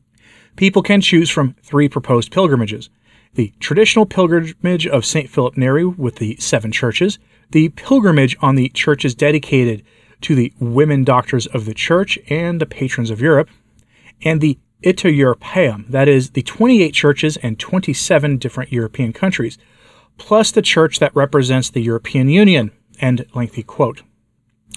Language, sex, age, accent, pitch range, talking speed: English, male, 40-59, American, 115-165 Hz, 145 wpm